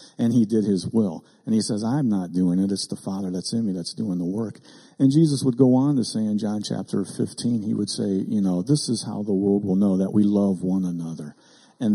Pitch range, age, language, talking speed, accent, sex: 95-125 Hz, 50-69, English, 255 wpm, American, male